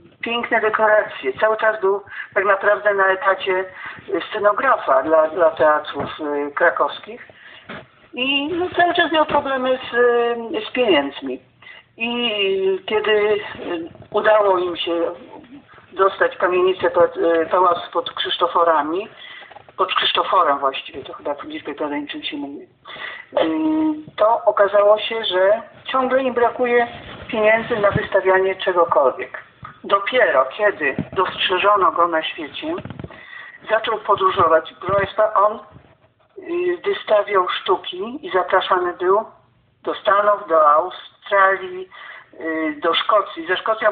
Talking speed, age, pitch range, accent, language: 110 wpm, 50-69, 175-235 Hz, native, Polish